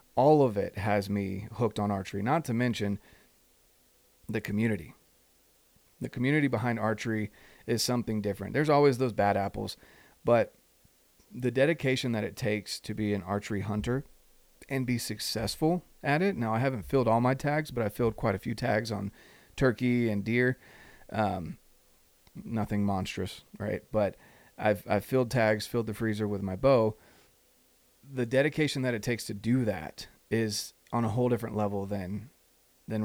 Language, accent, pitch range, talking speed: English, American, 100-120 Hz, 165 wpm